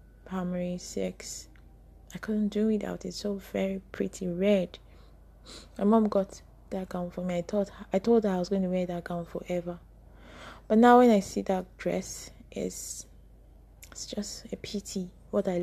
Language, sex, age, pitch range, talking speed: English, female, 20-39, 180-200 Hz, 175 wpm